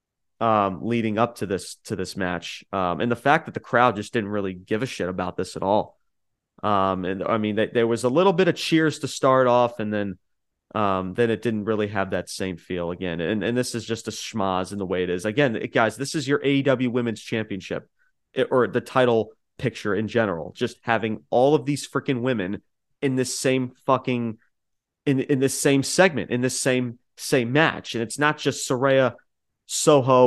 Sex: male